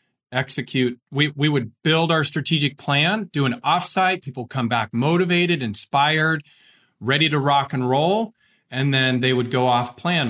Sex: male